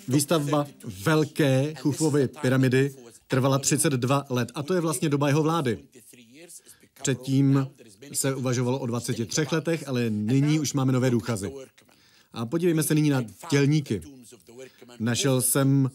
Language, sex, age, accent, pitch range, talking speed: Czech, male, 40-59, native, 125-150 Hz, 130 wpm